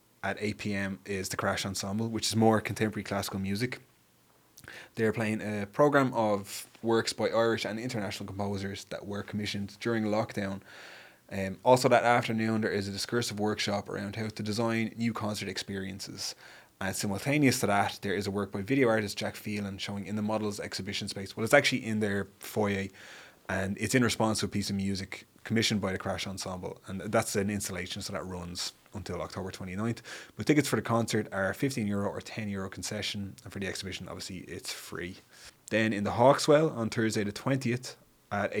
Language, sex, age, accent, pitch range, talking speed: English, male, 20-39, Irish, 100-110 Hz, 190 wpm